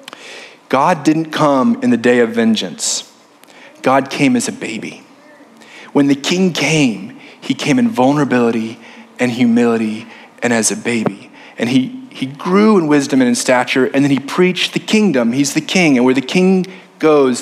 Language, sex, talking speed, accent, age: English, male, 170 wpm, American, 30-49